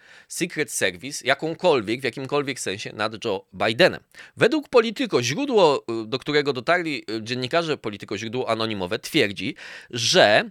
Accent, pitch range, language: native, 110-160 Hz, Polish